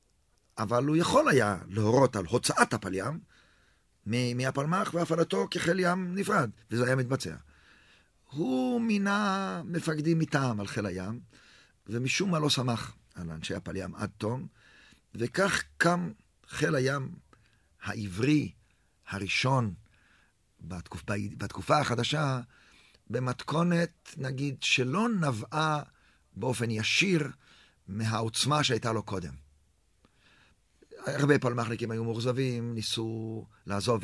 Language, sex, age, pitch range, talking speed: Hebrew, male, 50-69, 105-145 Hz, 105 wpm